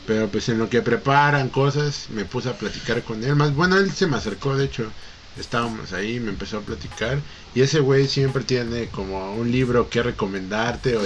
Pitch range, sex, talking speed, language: 110-140 Hz, male, 205 wpm, Spanish